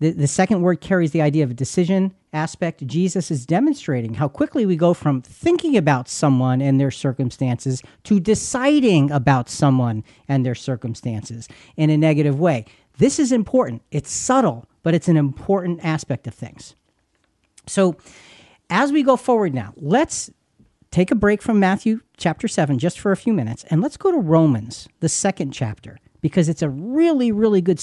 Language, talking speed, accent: English, 175 wpm, American